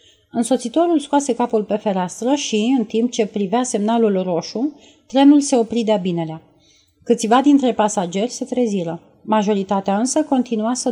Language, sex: Romanian, female